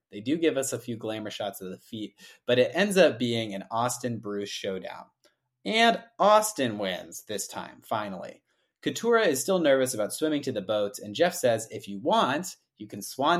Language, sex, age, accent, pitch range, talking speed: English, male, 30-49, American, 105-160 Hz, 195 wpm